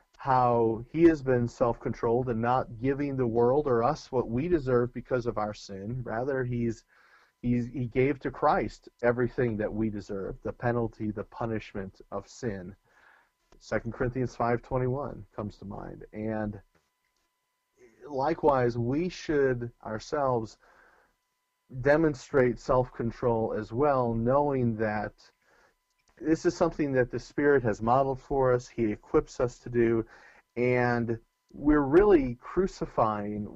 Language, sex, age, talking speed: English, male, 40-59, 130 wpm